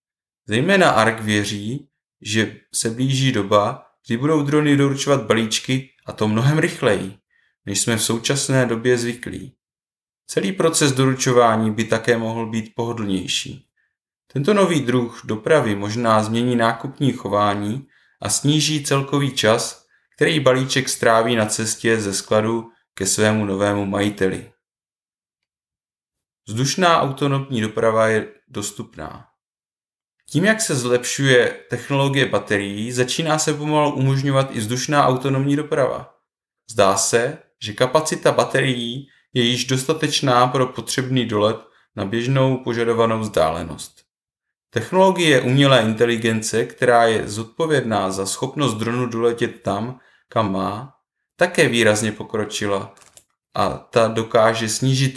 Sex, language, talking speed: male, Czech, 115 wpm